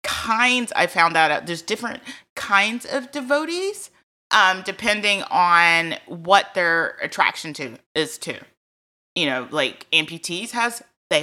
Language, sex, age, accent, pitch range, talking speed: English, female, 30-49, American, 160-210 Hz, 130 wpm